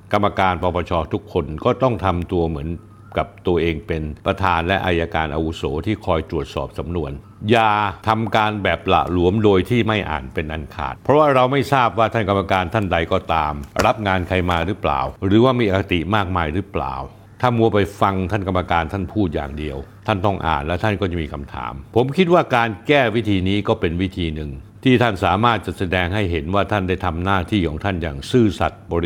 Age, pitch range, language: 60-79, 85-110 Hz, Thai